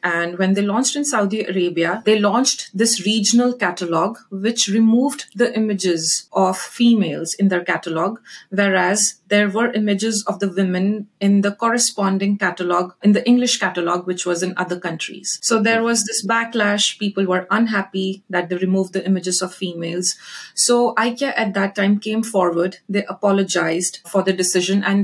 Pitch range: 185-225 Hz